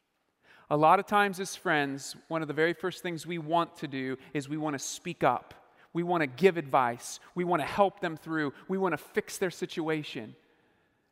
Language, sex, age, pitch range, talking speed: English, male, 40-59, 150-205 Hz, 210 wpm